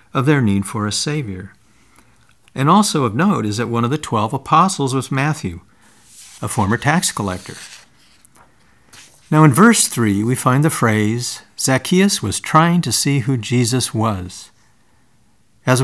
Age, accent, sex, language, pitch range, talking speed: 50-69, American, male, English, 105-140 Hz, 150 wpm